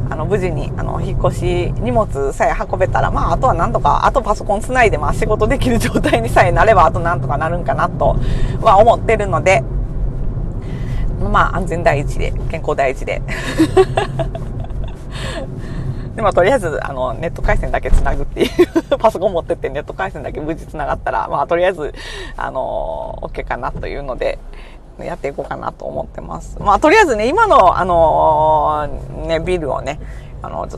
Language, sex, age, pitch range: Japanese, female, 40-59, 130-195 Hz